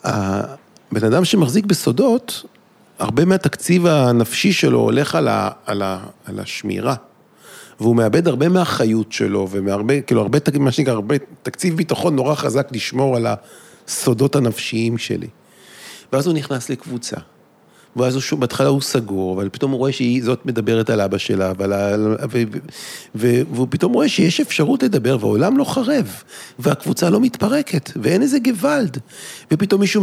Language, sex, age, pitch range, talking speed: Hebrew, male, 40-59, 120-180 Hz, 155 wpm